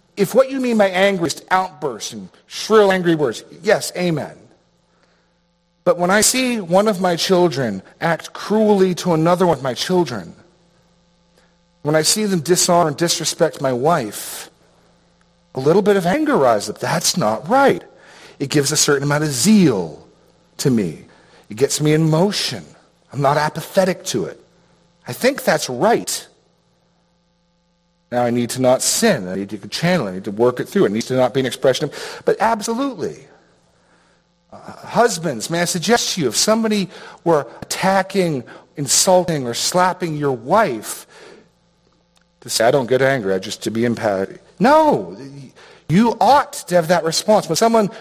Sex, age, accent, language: male, 40-59, American, English